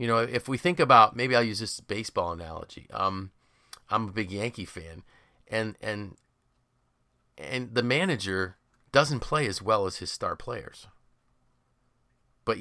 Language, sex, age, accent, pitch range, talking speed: English, male, 40-59, American, 90-120 Hz, 150 wpm